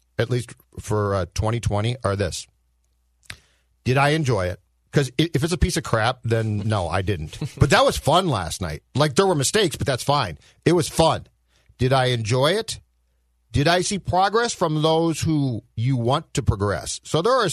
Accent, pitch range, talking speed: American, 110-145 Hz, 190 wpm